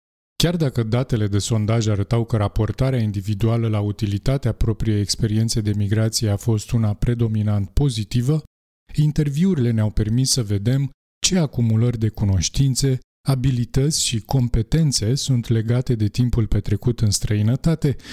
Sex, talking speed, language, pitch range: male, 130 wpm, Romanian, 110-135 Hz